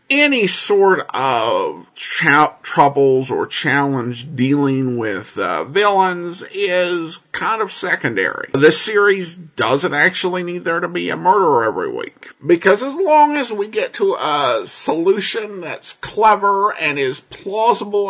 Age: 50-69